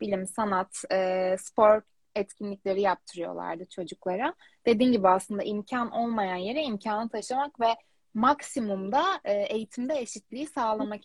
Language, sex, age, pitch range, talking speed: Turkish, female, 20-39, 190-245 Hz, 105 wpm